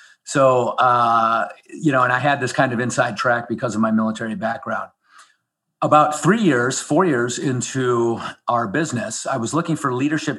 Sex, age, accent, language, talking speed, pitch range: male, 40-59, American, English, 175 wpm, 120-145 Hz